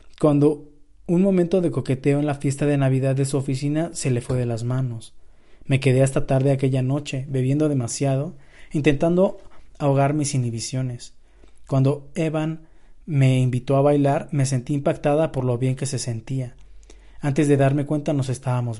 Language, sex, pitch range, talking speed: Spanish, male, 130-150 Hz, 165 wpm